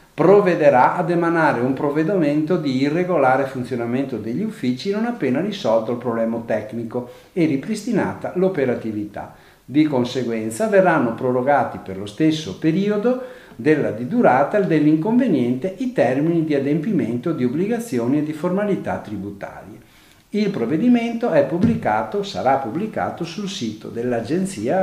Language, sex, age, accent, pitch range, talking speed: Italian, male, 50-69, native, 120-180 Hz, 120 wpm